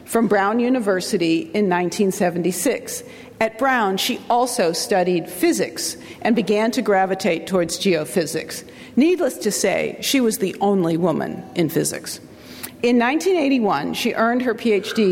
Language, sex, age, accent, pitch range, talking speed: English, female, 50-69, American, 185-235 Hz, 130 wpm